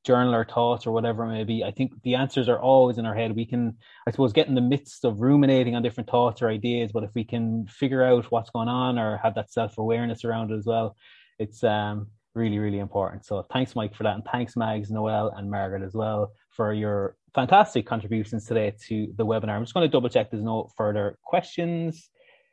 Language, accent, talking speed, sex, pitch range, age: English, Irish, 225 wpm, male, 105-130 Hz, 20-39